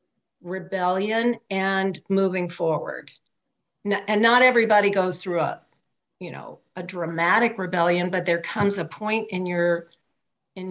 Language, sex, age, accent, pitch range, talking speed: English, female, 50-69, American, 175-215 Hz, 130 wpm